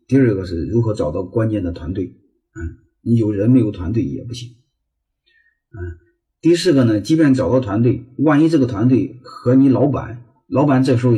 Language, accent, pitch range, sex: Chinese, native, 95-140 Hz, male